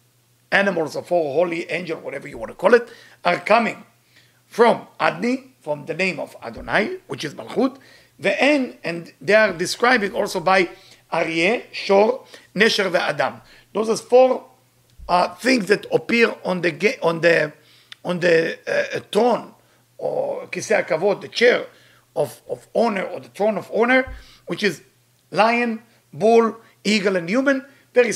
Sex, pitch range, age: male, 150-225 Hz, 50-69